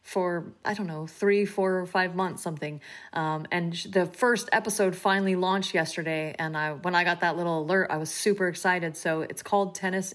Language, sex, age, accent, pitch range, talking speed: English, female, 30-49, American, 160-200 Hz, 200 wpm